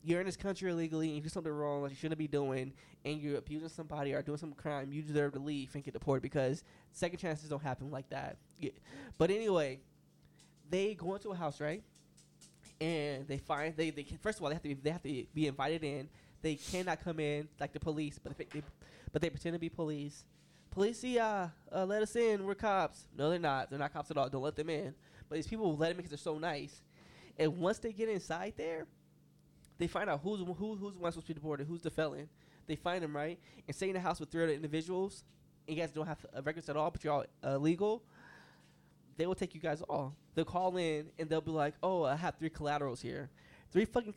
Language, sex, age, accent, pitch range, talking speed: English, male, 10-29, American, 145-175 Hz, 245 wpm